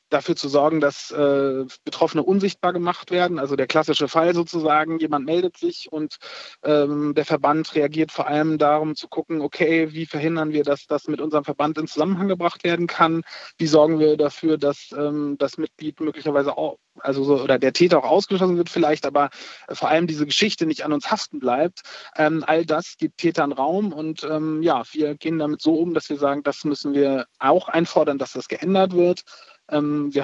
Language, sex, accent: German, male, German